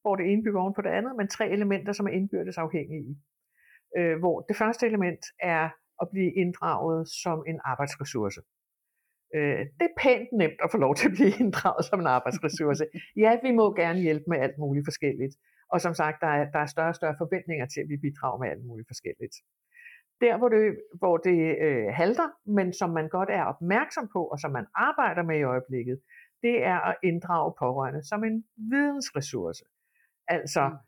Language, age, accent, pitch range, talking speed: Danish, 60-79, native, 155-210 Hz, 190 wpm